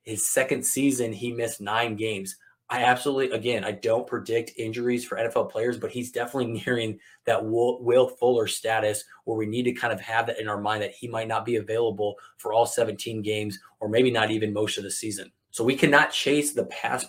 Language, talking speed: English, 215 wpm